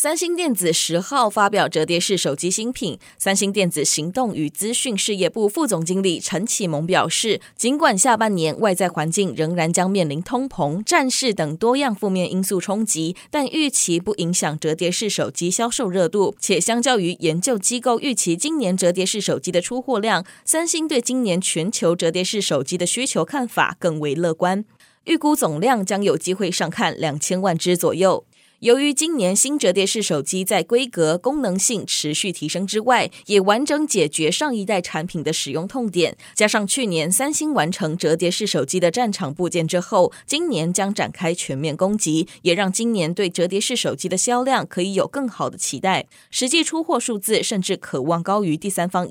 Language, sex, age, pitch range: Chinese, female, 20-39, 170-240 Hz